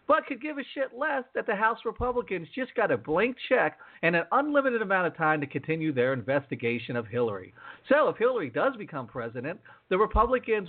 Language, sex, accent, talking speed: English, male, American, 195 wpm